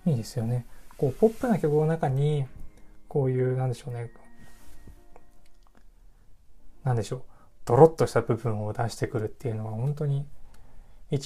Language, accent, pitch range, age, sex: Japanese, native, 105-135 Hz, 20-39, male